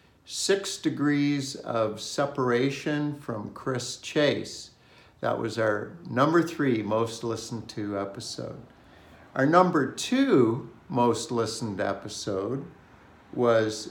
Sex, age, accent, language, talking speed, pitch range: male, 60-79, American, English, 100 wpm, 110-135 Hz